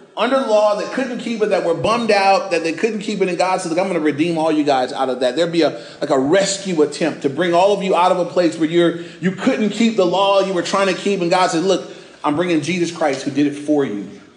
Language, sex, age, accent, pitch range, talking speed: English, male, 30-49, American, 170-210 Hz, 295 wpm